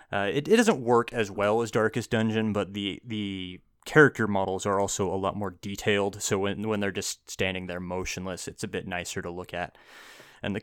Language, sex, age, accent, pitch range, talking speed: English, male, 20-39, American, 100-115 Hz, 215 wpm